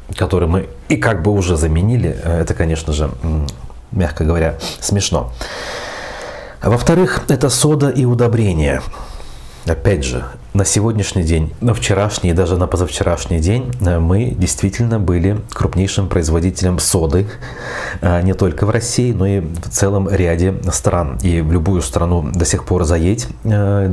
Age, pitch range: 30-49, 80-100 Hz